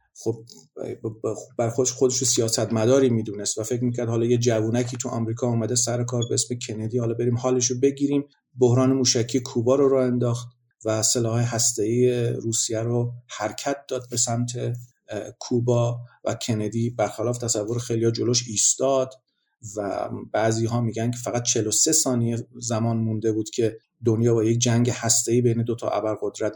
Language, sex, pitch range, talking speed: Persian, male, 115-125 Hz, 155 wpm